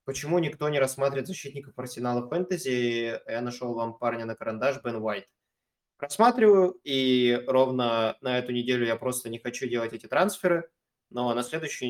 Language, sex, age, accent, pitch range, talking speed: Russian, male, 20-39, native, 115-135 Hz, 155 wpm